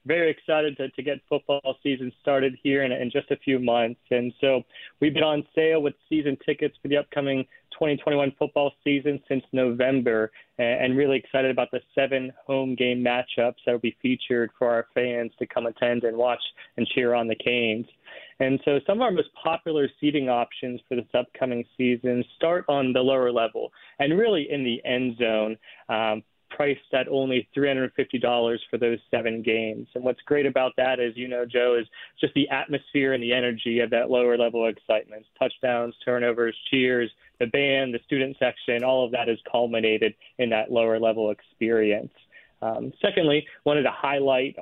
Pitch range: 120-140 Hz